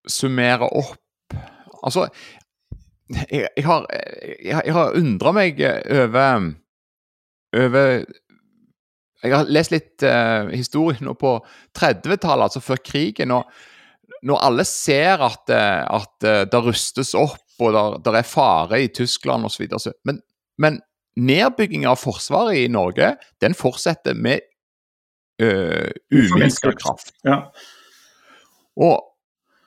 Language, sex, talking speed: English, male, 120 wpm